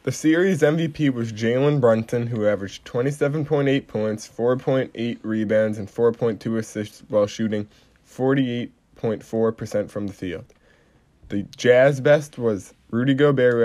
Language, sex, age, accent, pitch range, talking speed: English, male, 20-39, American, 110-125 Hz, 125 wpm